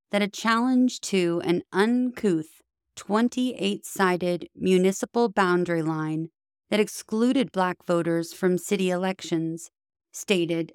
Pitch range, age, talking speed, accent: 170-205 Hz, 30-49, 100 wpm, American